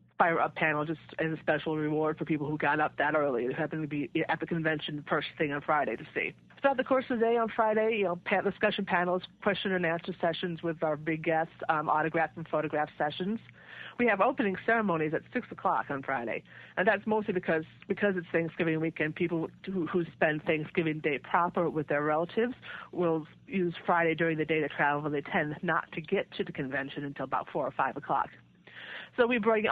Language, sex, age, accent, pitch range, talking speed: English, female, 50-69, American, 155-195 Hz, 215 wpm